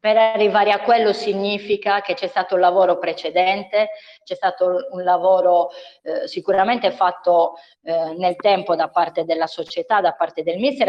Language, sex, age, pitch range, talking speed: Italian, female, 20-39, 175-200 Hz, 160 wpm